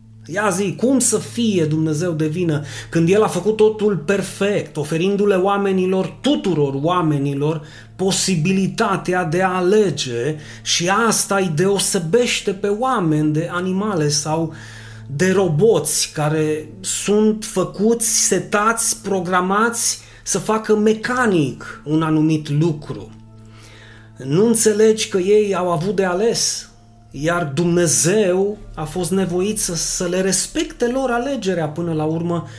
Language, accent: Romanian, native